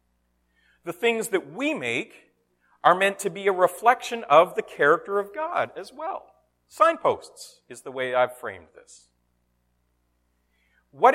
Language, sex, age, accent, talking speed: English, male, 40-59, American, 140 wpm